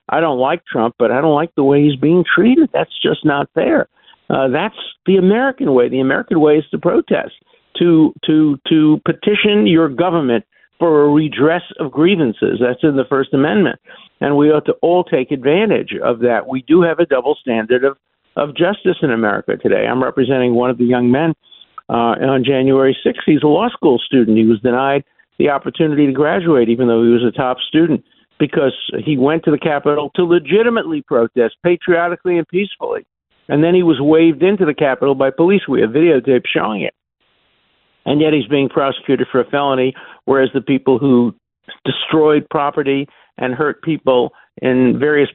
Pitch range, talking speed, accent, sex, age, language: 130-165 Hz, 185 wpm, American, male, 50-69, English